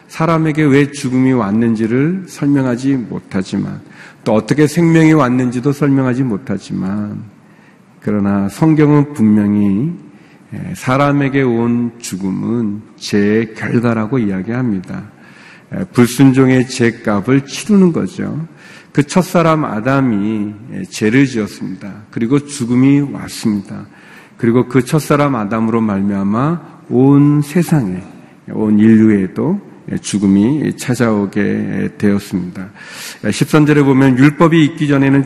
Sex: male